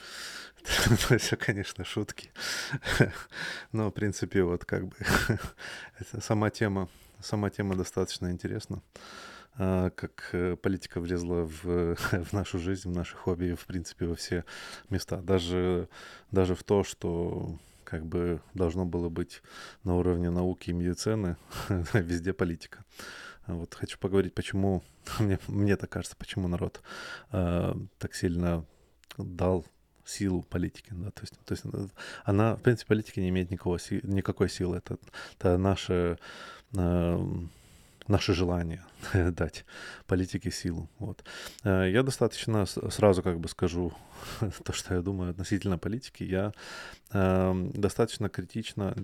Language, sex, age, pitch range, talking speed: Russian, male, 20-39, 90-100 Hz, 125 wpm